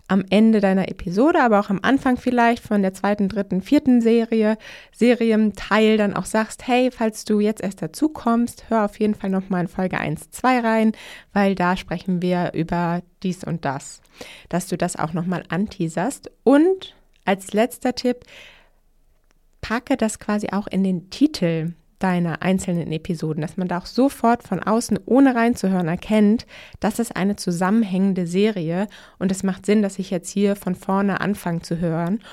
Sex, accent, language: female, German, German